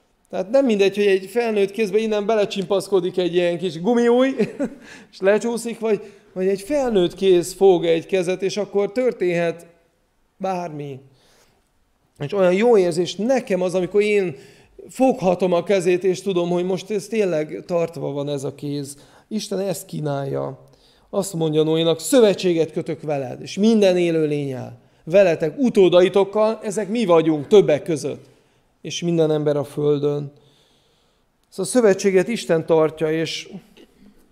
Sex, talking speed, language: male, 140 wpm, Hungarian